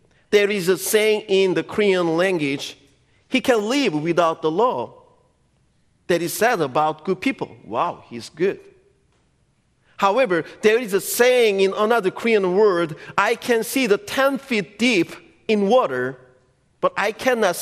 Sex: male